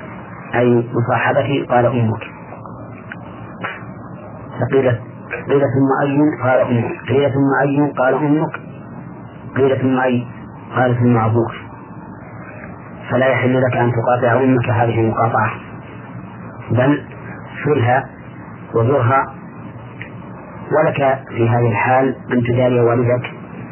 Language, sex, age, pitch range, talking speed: Arabic, male, 40-59, 120-155 Hz, 95 wpm